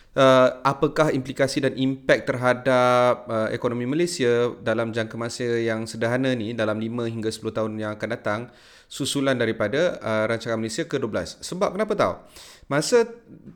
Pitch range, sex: 110-135 Hz, male